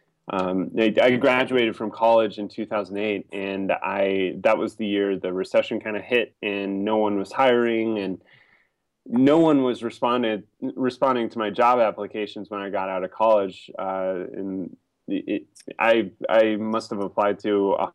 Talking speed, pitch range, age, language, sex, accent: 155 wpm, 100-115 Hz, 20-39, English, male, American